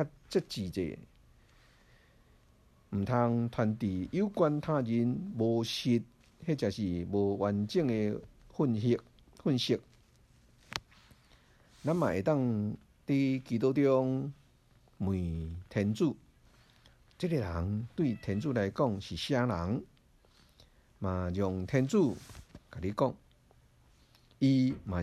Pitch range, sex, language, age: 90-130 Hz, male, Chinese, 50-69